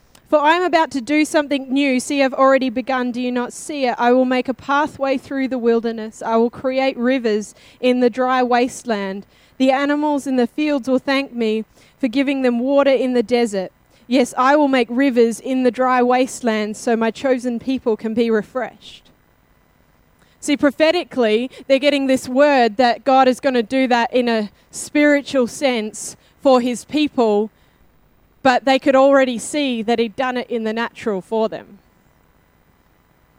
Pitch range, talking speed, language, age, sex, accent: 230-275 Hz, 175 wpm, English, 20-39, female, Australian